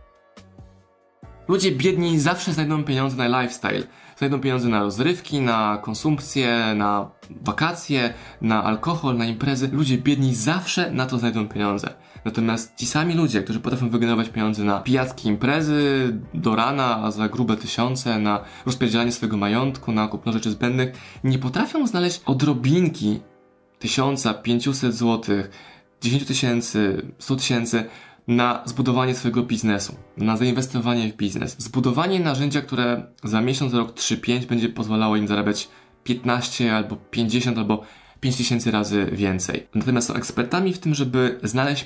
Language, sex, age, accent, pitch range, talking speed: Polish, male, 20-39, native, 110-130 Hz, 135 wpm